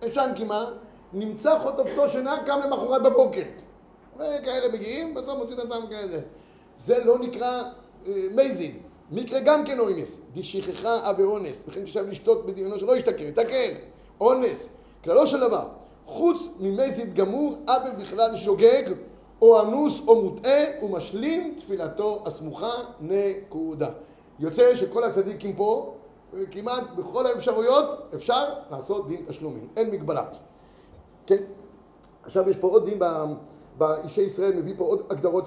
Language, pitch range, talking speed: Hebrew, 200-310 Hz, 135 wpm